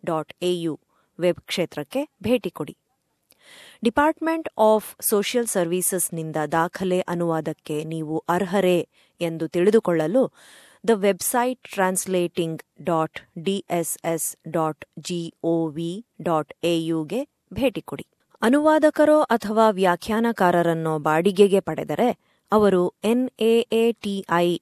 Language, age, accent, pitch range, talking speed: Kannada, 20-39, native, 165-210 Hz, 85 wpm